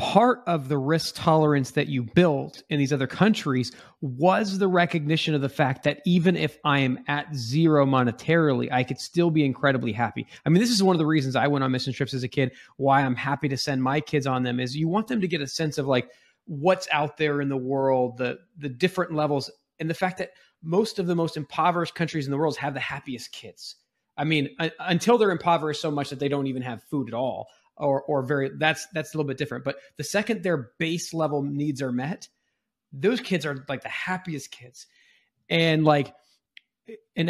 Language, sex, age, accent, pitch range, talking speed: English, male, 20-39, American, 135-170 Hz, 220 wpm